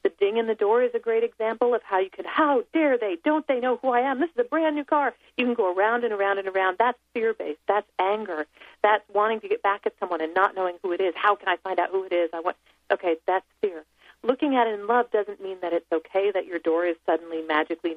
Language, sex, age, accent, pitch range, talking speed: English, female, 40-59, American, 175-245 Hz, 275 wpm